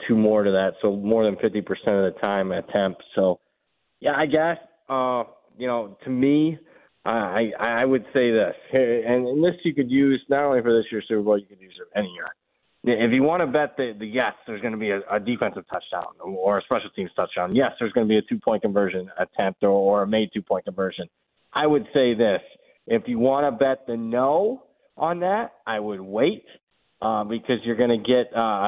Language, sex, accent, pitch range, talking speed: English, male, American, 105-135 Hz, 220 wpm